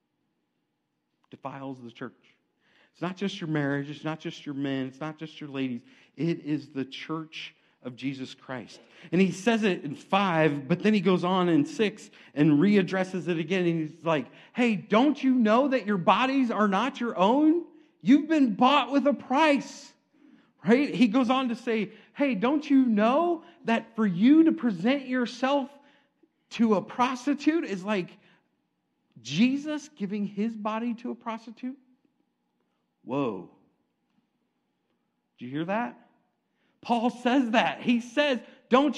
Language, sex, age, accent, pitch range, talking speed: English, male, 40-59, American, 170-255 Hz, 155 wpm